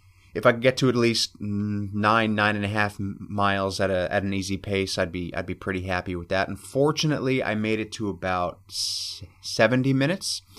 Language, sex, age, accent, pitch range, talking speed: English, male, 30-49, American, 95-125 Hz, 200 wpm